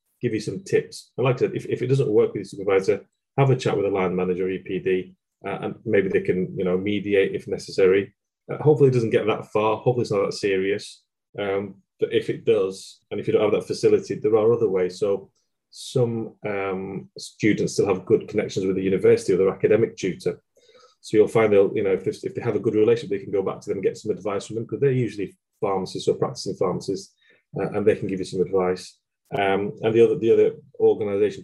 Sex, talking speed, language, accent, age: male, 235 wpm, English, British, 30-49